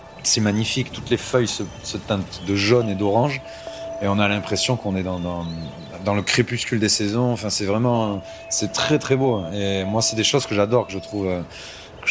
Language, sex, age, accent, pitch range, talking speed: French, male, 30-49, French, 95-115 Hz, 215 wpm